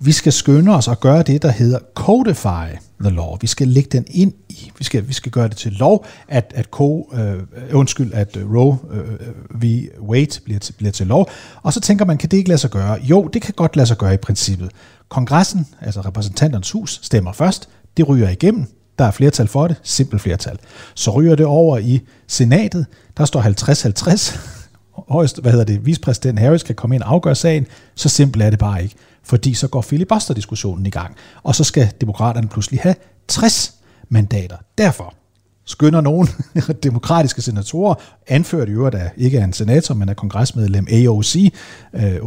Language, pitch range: Danish, 105-150 Hz